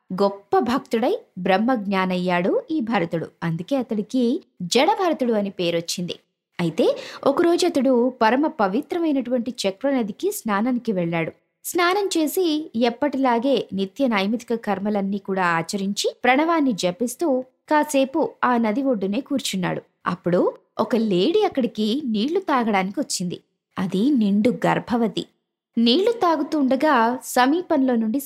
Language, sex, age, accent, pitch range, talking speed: Telugu, female, 20-39, native, 190-275 Hz, 105 wpm